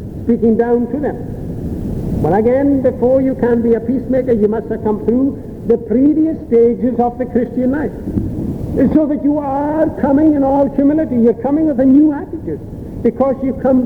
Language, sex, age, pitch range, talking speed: English, male, 60-79, 245-280 Hz, 180 wpm